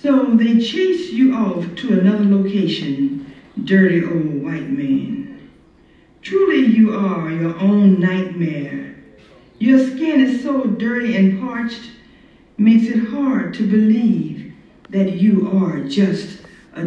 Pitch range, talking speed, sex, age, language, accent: 190-265 Hz, 125 wpm, female, 60-79, English, American